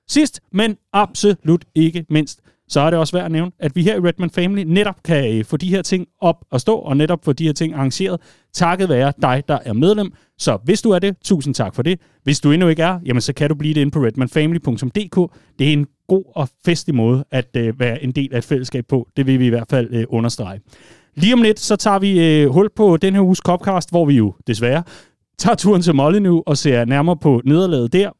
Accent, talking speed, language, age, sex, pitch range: native, 245 wpm, Danish, 30-49, male, 135-185 Hz